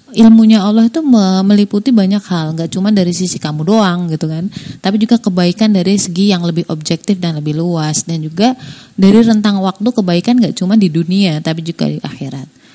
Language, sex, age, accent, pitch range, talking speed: Indonesian, female, 30-49, native, 175-220 Hz, 185 wpm